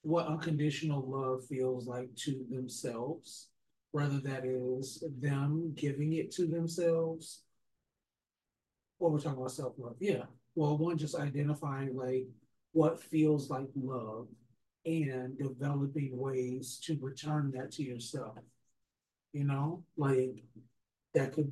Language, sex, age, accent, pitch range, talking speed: English, male, 40-59, American, 125-145 Hz, 125 wpm